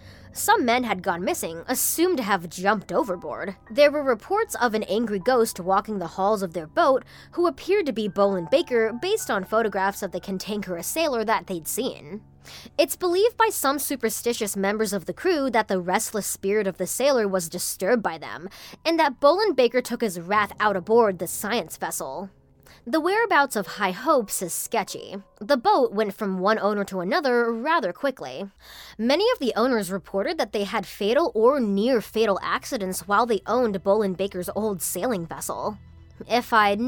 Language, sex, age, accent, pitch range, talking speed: English, female, 20-39, American, 195-290 Hz, 180 wpm